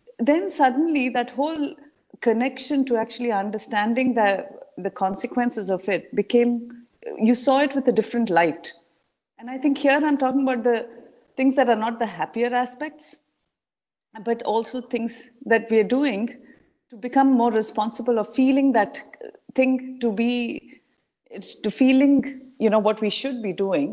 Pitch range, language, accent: 195-260 Hz, English, Indian